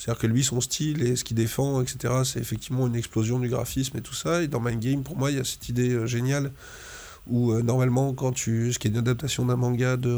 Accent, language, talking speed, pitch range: French, French, 260 wpm, 120-130 Hz